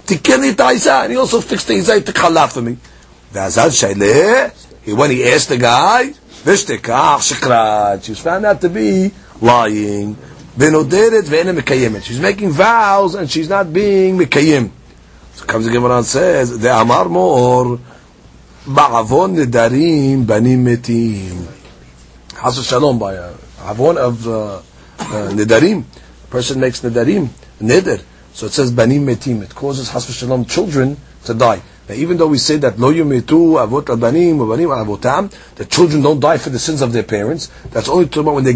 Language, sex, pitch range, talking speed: English, male, 115-175 Hz, 150 wpm